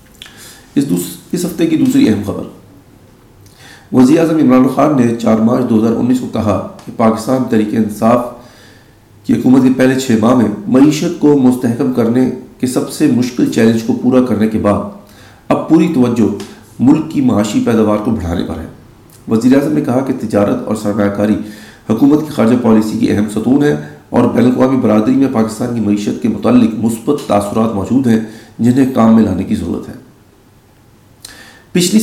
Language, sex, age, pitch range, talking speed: Urdu, male, 40-59, 105-130 Hz, 170 wpm